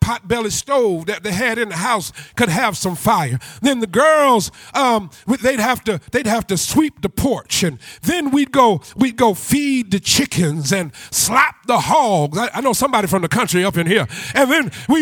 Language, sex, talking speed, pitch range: English, male, 210 wpm, 200-270 Hz